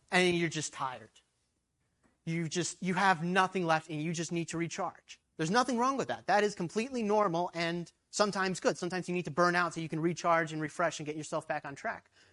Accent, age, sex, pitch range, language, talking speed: American, 30-49, male, 160-190 Hz, English, 220 wpm